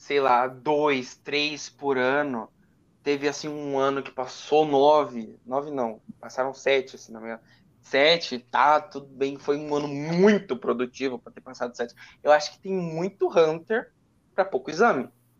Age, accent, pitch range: 20-39, Brazilian, 125-165 Hz